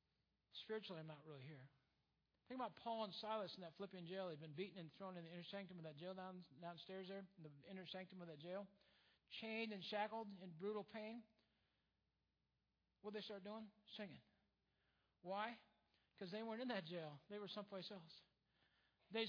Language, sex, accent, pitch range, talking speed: English, male, American, 195-255 Hz, 185 wpm